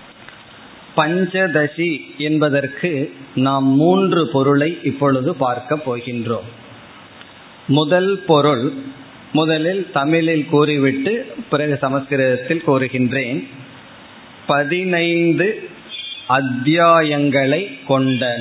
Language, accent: Tamil, native